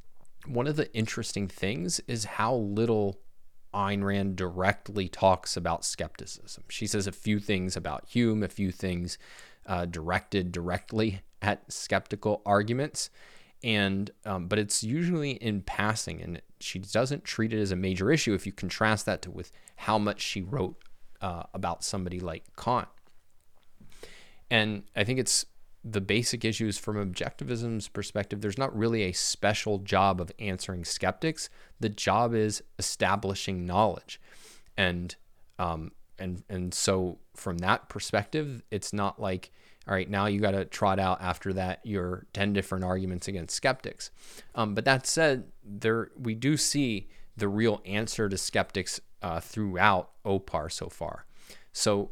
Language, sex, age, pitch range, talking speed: English, male, 20-39, 95-110 Hz, 150 wpm